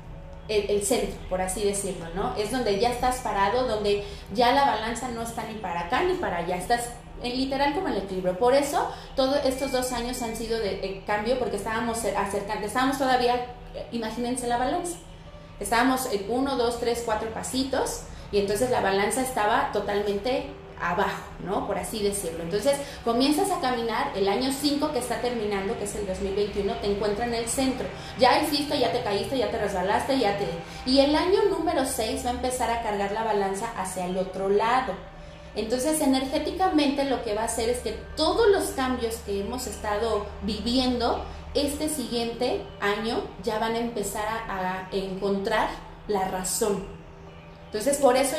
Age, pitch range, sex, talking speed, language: 30-49, 200-255 Hz, female, 175 wpm, Spanish